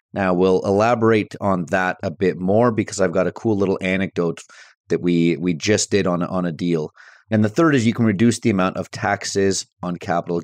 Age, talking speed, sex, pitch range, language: 30-49, 215 wpm, male, 90-110 Hz, English